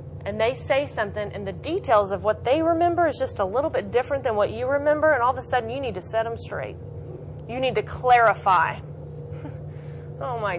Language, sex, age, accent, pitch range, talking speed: English, female, 30-49, American, 195-235 Hz, 215 wpm